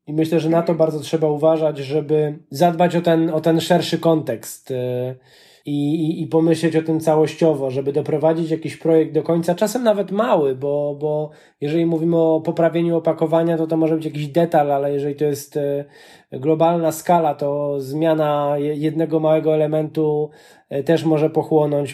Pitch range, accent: 150-165 Hz, native